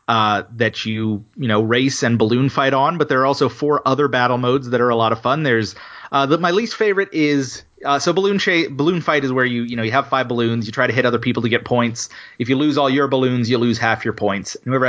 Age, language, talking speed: 30-49, English, 270 wpm